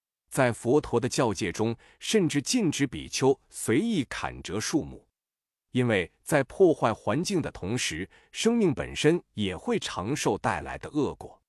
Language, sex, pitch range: Chinese, male, 105-145 Hz